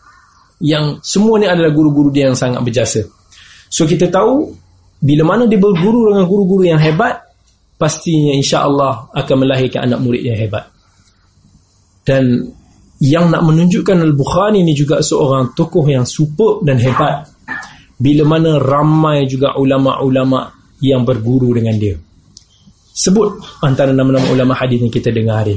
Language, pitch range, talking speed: Malay, 125-200 Hz, 140 wpm